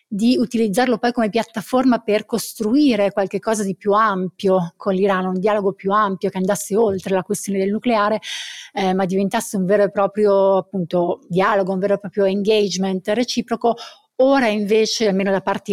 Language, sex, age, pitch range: Italian, female, 30-49, 195-220 Hz